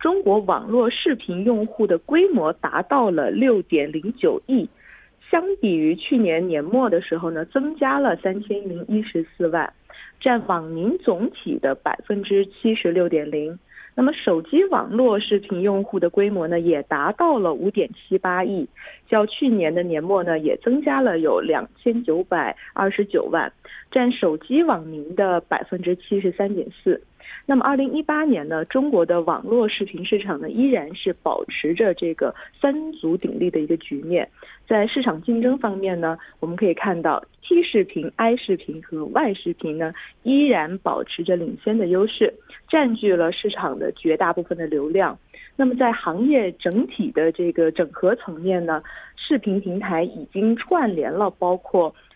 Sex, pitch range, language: female, 175-260 Hz, Korean